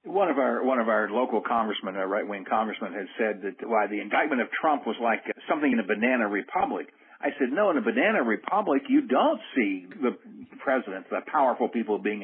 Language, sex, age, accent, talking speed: English, male, 60-79, American, 215 wpm